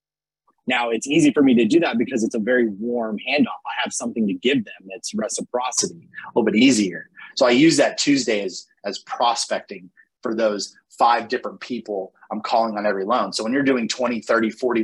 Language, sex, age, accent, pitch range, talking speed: English, male, 30-49, American, 110-135 Hz, 205 wpm